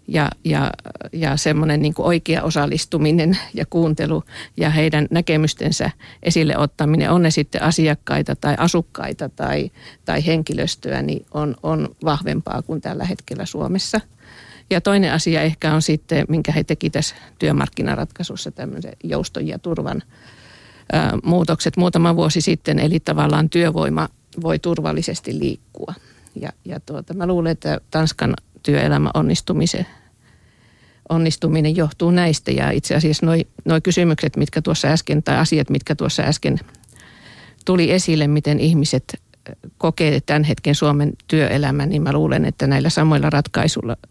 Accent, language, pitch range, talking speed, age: native, Finnish, 145-165 Hz, 130 wpm, 50-69